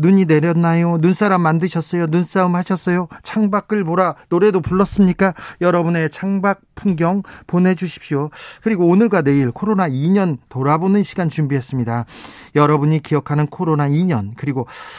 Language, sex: Korean, male